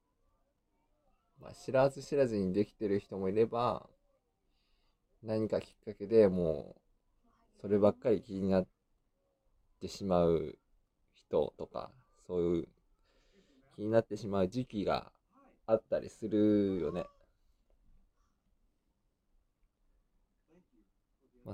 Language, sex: Japanese, male